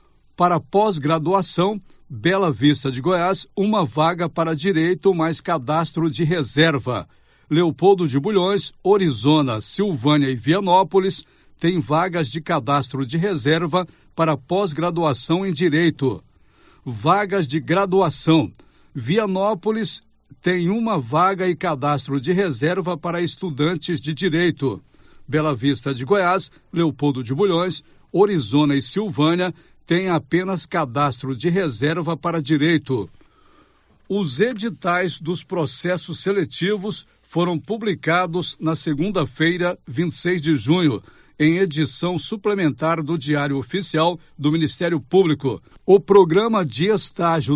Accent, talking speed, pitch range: Brazilian, 110 wpm, 150-185 Hz